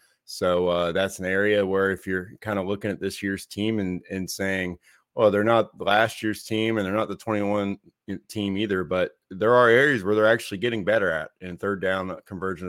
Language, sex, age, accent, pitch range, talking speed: English, male, 20-39, American, 90-105 Hz, 220 wpm